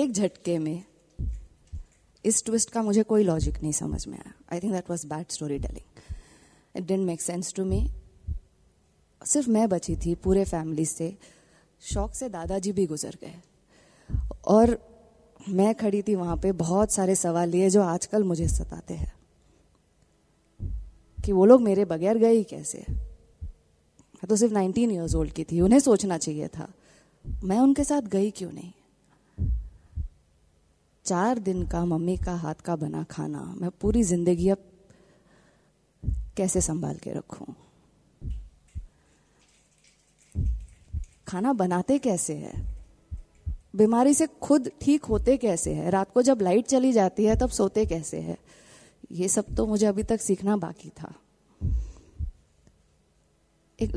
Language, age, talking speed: Hindi, 20-39, 140 wpm